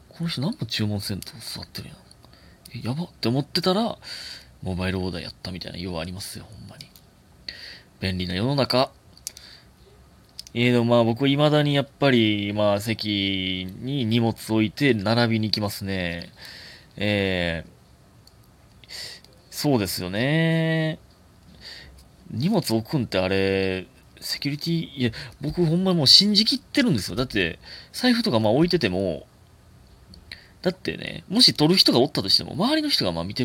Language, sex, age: Japanese, male, 30-49